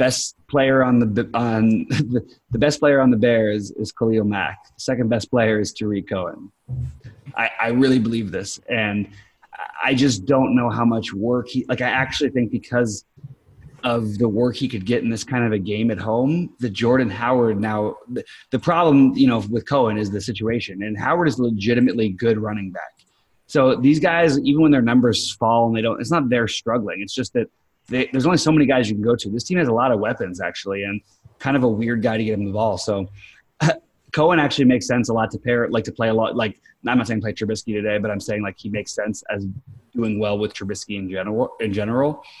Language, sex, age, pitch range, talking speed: English, male, 20-39, 110-130 Hz, 225 wpm